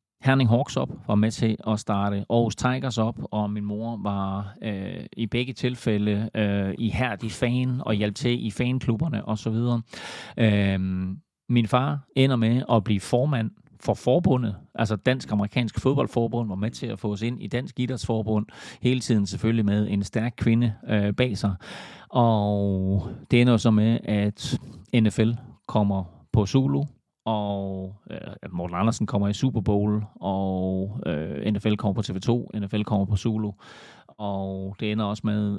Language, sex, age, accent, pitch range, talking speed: Danish, male, 40-59, native, 105-120 Hz, 155 wpm